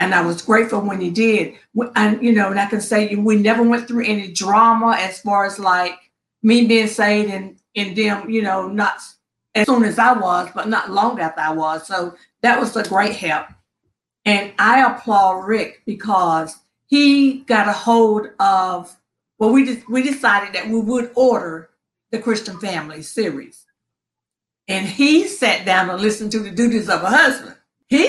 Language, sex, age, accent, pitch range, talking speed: English, female, 50-69, American, 195-235 Hz, 185 wpm